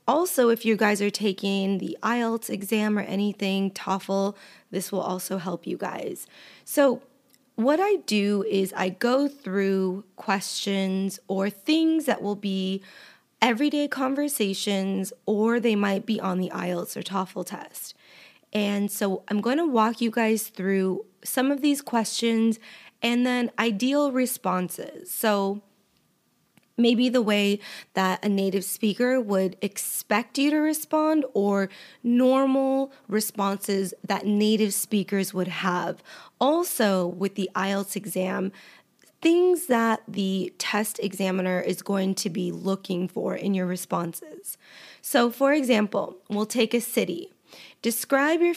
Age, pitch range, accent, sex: 20-39, 195-240 Hz, American, female